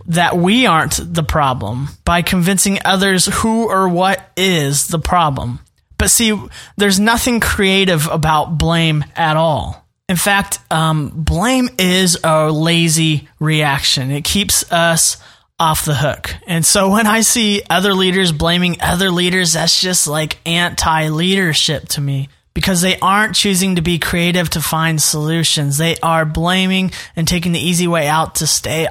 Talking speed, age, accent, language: 155 wpm, 20-39, American, English